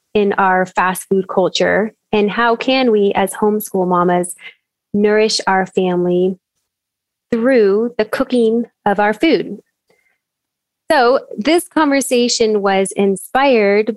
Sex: female